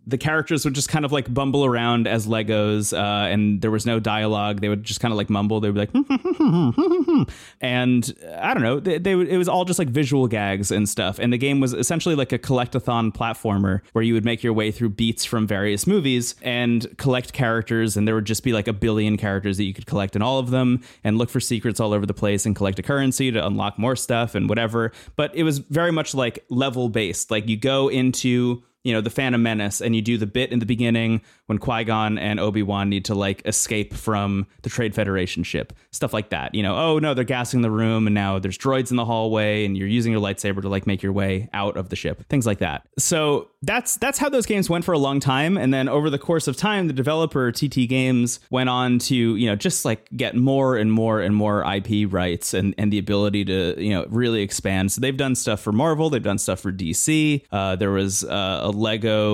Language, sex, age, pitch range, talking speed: English, male, 20-39, 105-130 Hz, 240 wpm